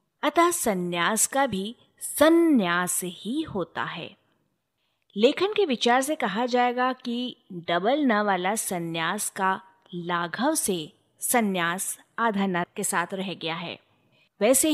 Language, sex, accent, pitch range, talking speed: Hindi, female, native, 180-255 Hz, 125 wpm